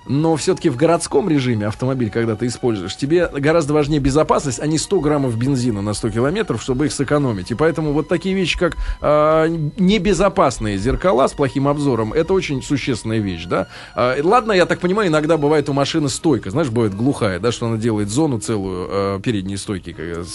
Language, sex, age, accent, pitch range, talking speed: Russian, male, 20-39, native, 120-170 Hz, 180 wpm